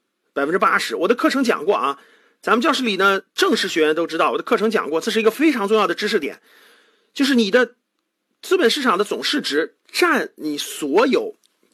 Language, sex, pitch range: Chinese, male, 220-315 Hz